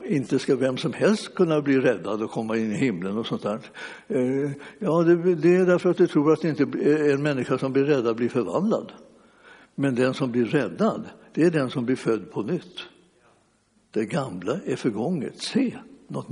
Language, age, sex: Swedish, 60-79, male